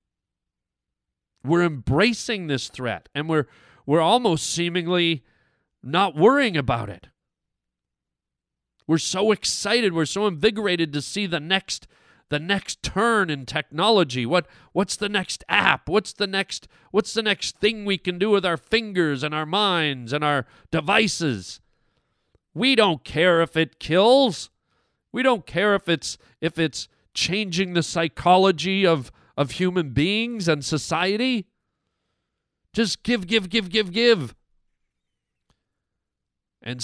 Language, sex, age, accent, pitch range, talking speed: English, male, 40-59, American, 135-200 Hz, 130 wpm